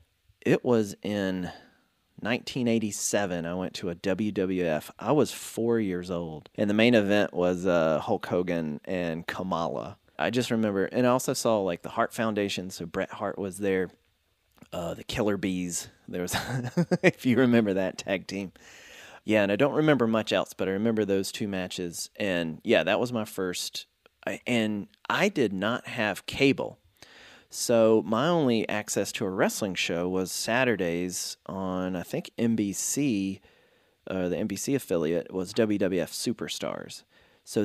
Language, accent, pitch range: English, American, 90-115 Hz